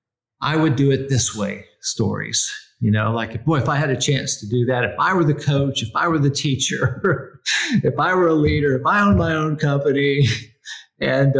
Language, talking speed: English, 215 wpm